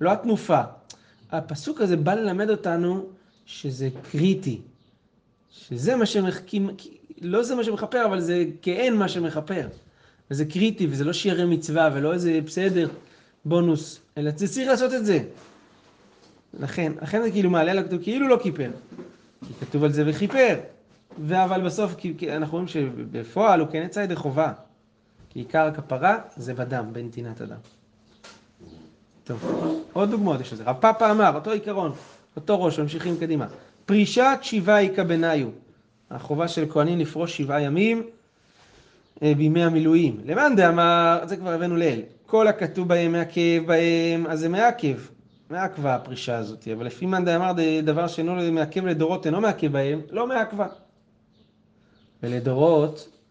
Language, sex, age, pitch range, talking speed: Hebrew, male, 30-49, 150-190 Hz, 145 wpm